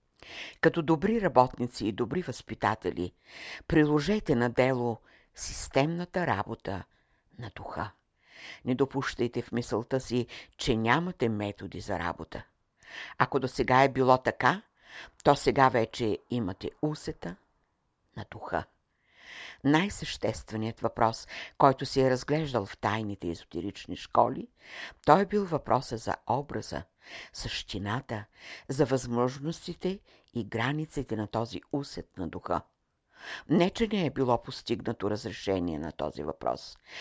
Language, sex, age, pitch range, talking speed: Bulgarian, female, 60-79, 110-145 Hz, 115 wpm